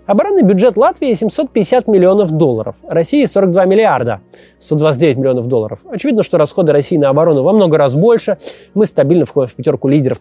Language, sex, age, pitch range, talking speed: Russian, male, 20-39, 155-225 Hz, 165 wpm